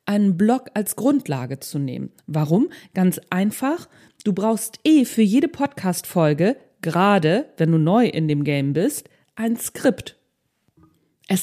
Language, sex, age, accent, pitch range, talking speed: German, female, 40-59, German, 175-230 Hz, 135 wpm